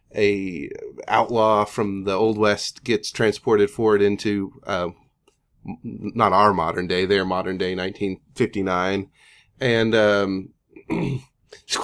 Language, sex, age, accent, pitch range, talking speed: English, male, 30-49, American, 100-135 Hz, 100 wpm